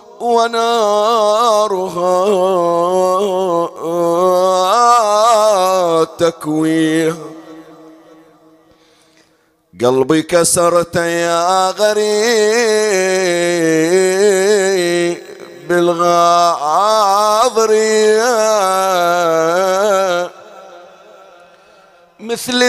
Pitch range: 165-205 Hz